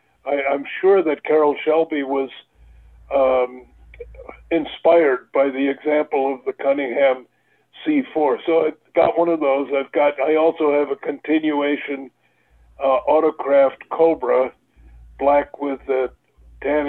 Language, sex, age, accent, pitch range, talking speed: English, male, 60-79, American, 130-150 Hz, 125 wpm